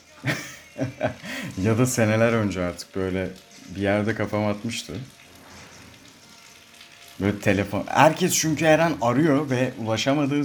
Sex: male